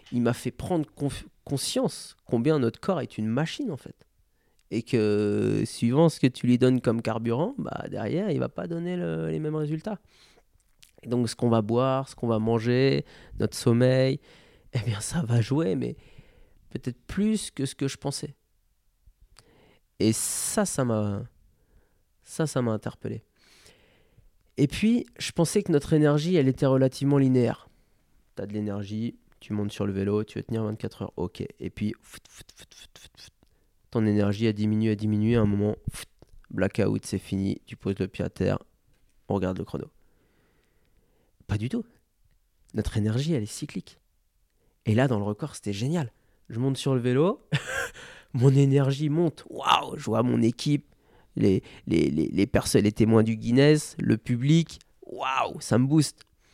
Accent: French